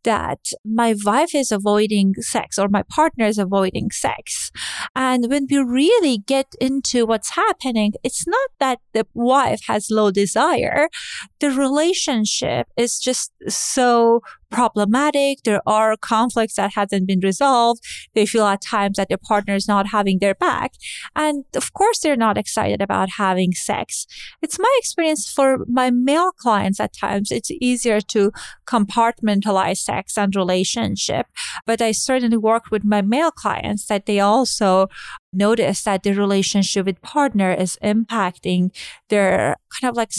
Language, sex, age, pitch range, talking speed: English, female, 30-49, 200-260 Hz, 150 wpm